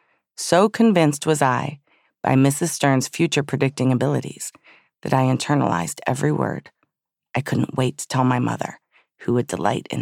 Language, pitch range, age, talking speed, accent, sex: English, 125-155 Hz, 40-59, 150 wpm, American, female